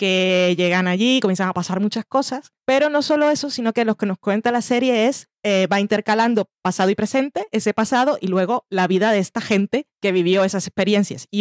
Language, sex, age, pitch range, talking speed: Spanish, female, 20-39, 185-230 Hz, 220 wpm